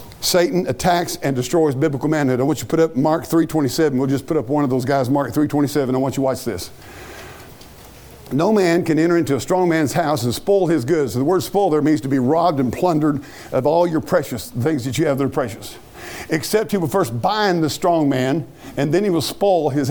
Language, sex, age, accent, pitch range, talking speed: English, male, 50-69, American, 135-190 Hz, 245 wpm